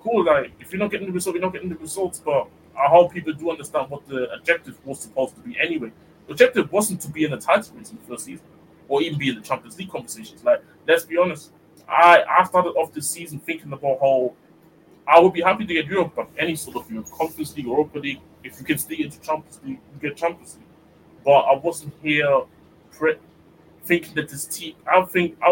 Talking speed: 240 wpm